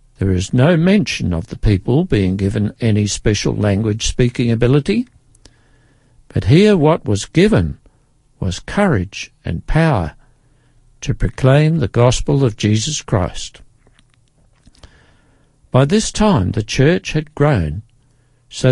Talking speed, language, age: 120 wpm, English, 60-79